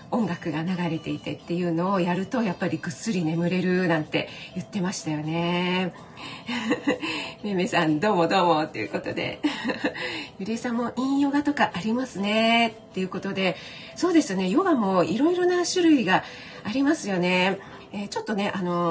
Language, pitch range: Japanese, 170-230 Hz